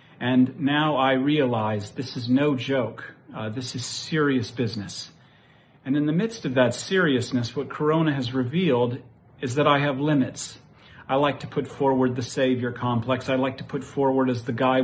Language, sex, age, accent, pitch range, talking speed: English, male, 40-59, American, 120-140 Hz, 180 wpm